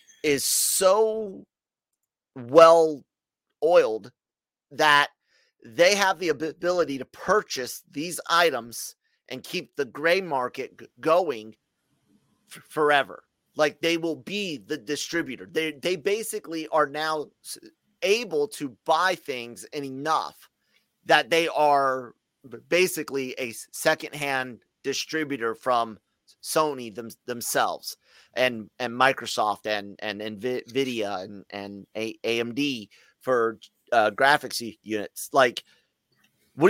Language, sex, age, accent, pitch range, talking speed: English, male, 30-49, American, 125-165 Hz, 105 wpm